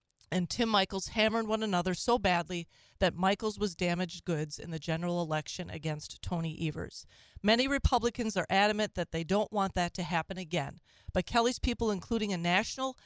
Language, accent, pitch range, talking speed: English, American, 175-230 Hz, 175 wpm